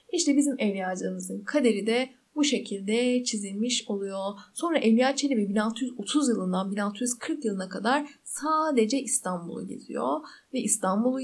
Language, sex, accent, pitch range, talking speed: Turkish, female, native, 210-250 Hz, 115 wpm